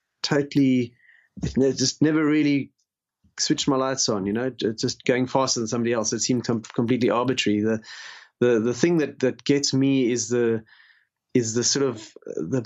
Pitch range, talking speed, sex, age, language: 115-140 Hz, 165 wpm, male, 30-49, English